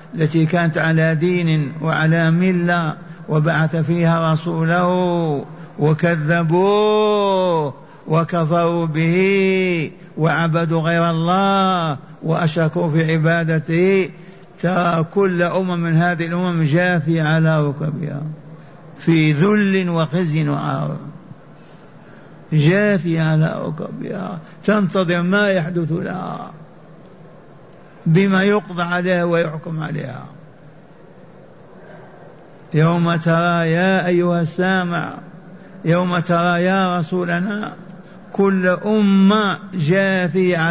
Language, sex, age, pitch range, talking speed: Arabic, male, 50-69, 160-185 Hz, 80 wpm